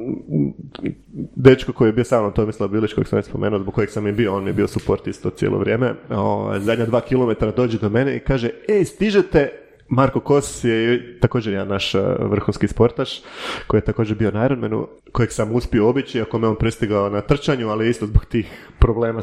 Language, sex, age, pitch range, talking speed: Croatian, male, 30-49, 110-140 Hz, 195 wpm